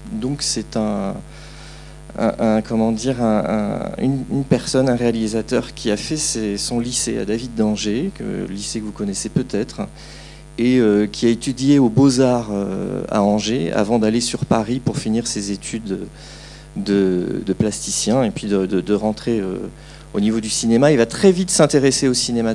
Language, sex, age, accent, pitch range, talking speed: French, male, 40-59, French, 110-135 Hz, 185 wpm